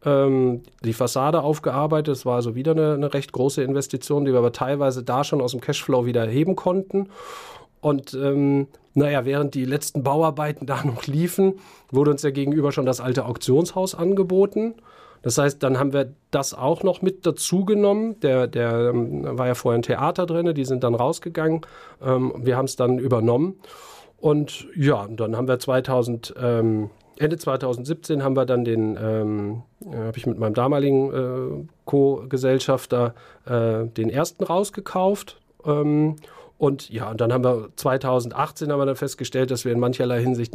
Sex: male